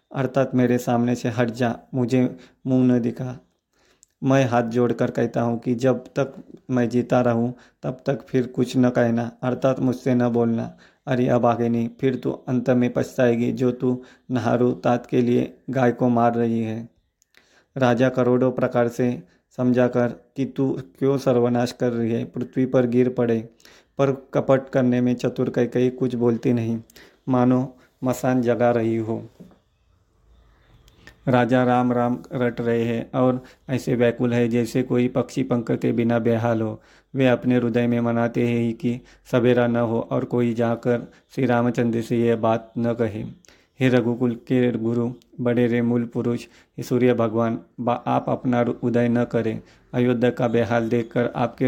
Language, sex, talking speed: Hindi, male, 165 wpm